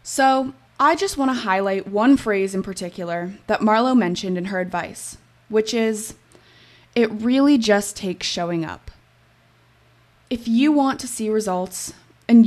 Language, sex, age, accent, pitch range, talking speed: English, female, 20-39, American, 190-245 Hz, 145 wpm